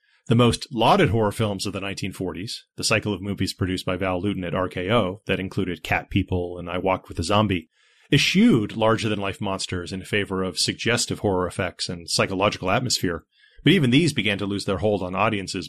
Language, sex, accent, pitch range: English, male, American, 95-120 Hz